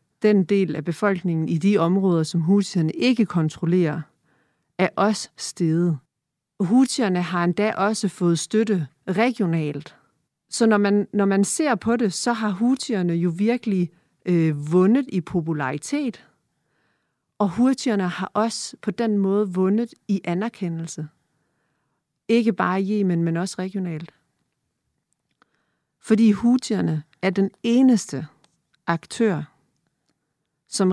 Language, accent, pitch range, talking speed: Danish, native, 160-200 Hz, 120 wpm